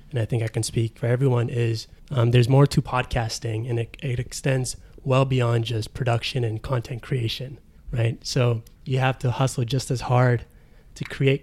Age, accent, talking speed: 20-39, American, 190 wpm